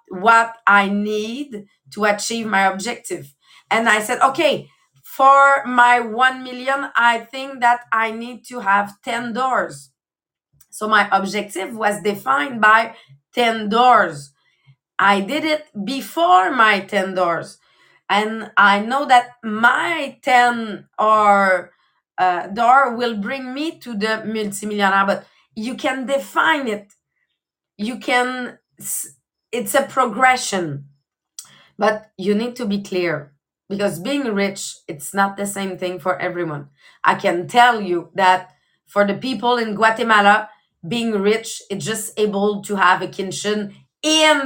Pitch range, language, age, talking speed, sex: 195-245 Hz, English, 30-49, 135 wpm, female